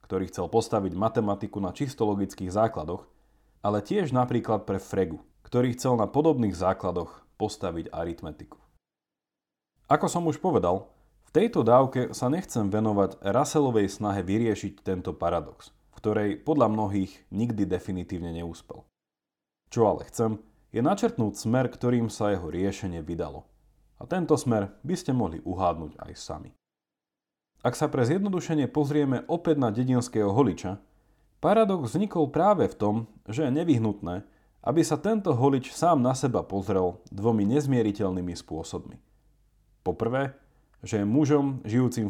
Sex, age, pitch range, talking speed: male, 30-49, 95-135 Hz, 135 wpm